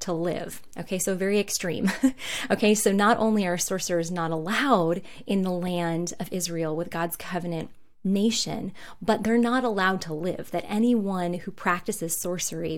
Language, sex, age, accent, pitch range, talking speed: English, female, 20-39, American, 180-225 Hz, 160 wpm